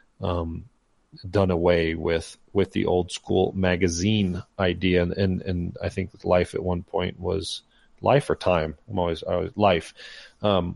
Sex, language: male, English